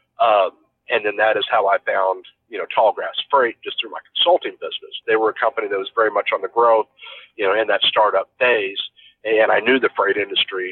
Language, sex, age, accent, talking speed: English, male, 40-59, American, 225 wpm